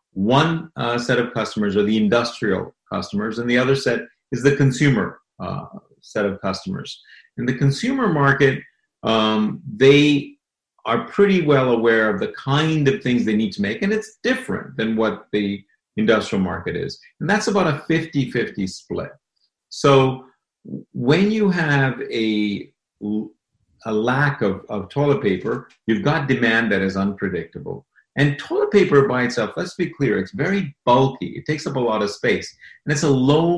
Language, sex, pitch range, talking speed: English, male, 115-160 Hz, 165 wpm